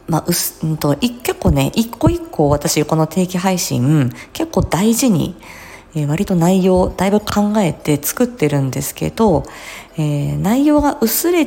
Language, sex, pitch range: Japanese, female, 145-230 Hz